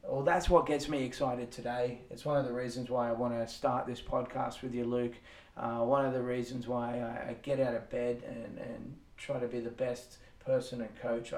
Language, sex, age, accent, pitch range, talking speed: English, male, 20-39, Australian, 120-130 Hz, 230 wpm